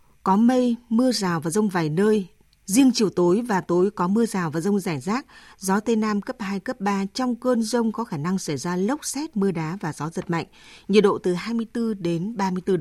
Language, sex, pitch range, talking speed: Vietnamese, female, 175-220 Hz, 230 wpm